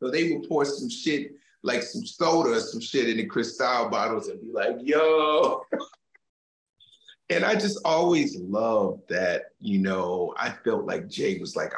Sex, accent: male, American